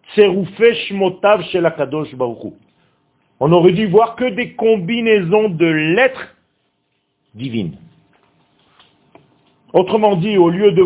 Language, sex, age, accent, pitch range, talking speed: French, male, 50-69, French, 165-225 Hz, 85 wpm